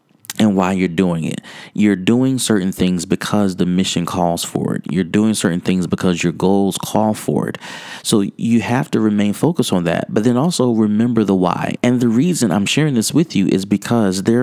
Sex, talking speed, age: male, 210 wpm, 30-49